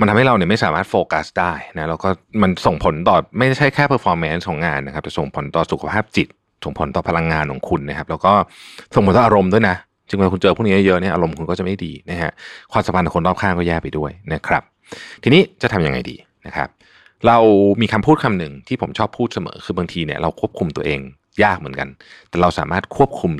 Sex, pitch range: male, 80-110 Hz